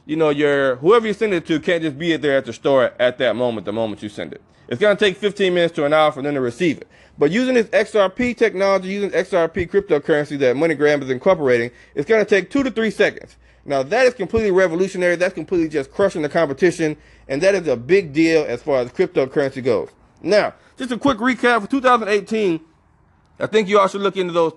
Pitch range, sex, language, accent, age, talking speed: 145-195 Hz, male, English, American, 30-49, 230 wpm